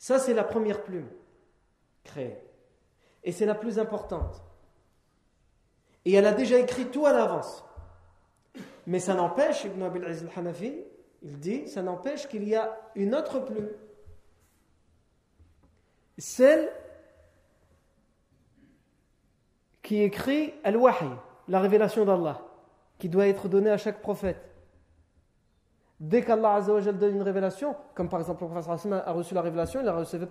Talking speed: 135 wpm